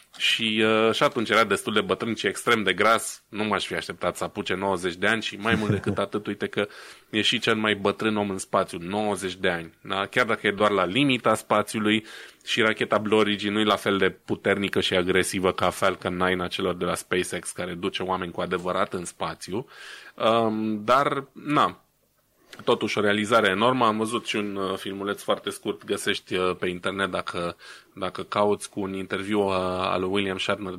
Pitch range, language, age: 95-105 Hz, Romanian, 20-39